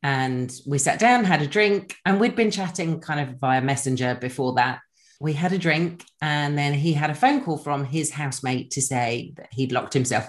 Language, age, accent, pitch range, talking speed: English, 30-49, British, 130-165 Hz, 215 wpm